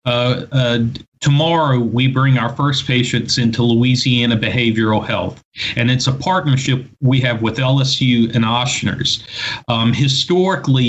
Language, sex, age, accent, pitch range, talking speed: English, male, 50-69, American, 115-135 Hz, 130 wpm